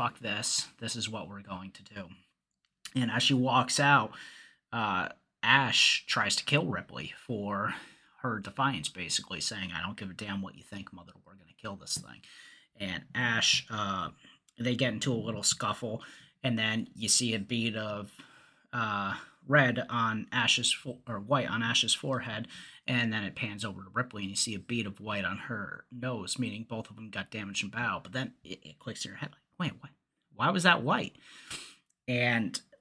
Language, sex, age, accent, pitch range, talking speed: English, male, 30-49, American, 105-125 Hz, 190 wpm